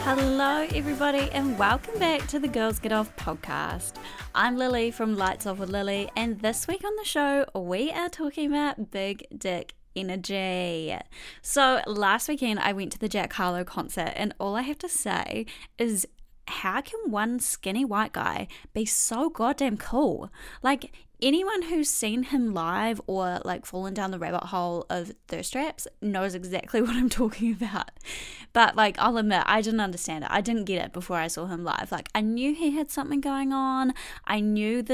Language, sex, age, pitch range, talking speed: English, female, 10-29, 195-275 Hz, 185 wpm